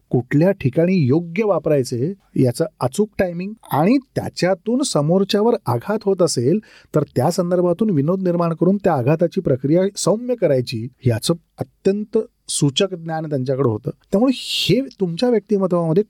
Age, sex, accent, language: 40-59, male, native, Marathi